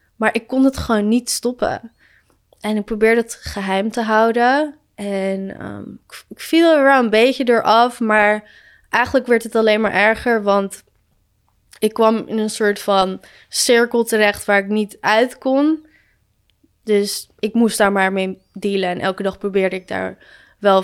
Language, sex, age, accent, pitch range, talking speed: Dutch, female, 20-39, Dutch, 195-230 Hz, 165 wpm